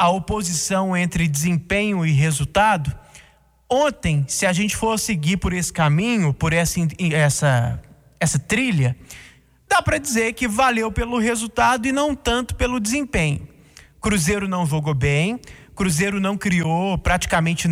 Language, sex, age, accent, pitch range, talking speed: Portuguese, male, 20-39, Brazilian, 160-240 Hz, 135 wpm